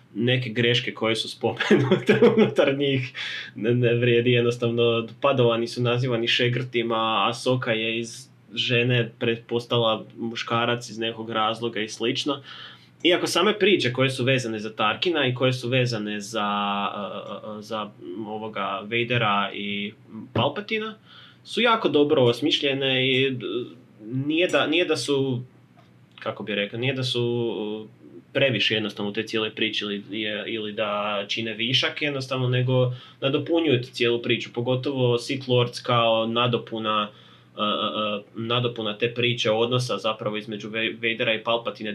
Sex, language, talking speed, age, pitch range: male, Croatian, 130 wpm, 20-39, 110-125 Hz